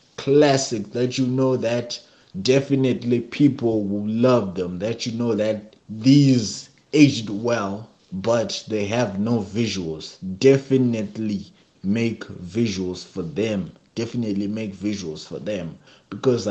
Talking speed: 120 wpm